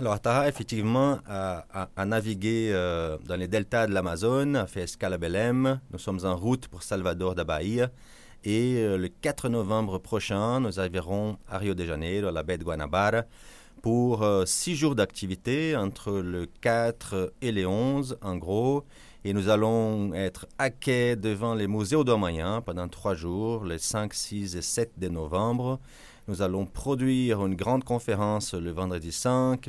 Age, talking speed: 30-49, 170 wpm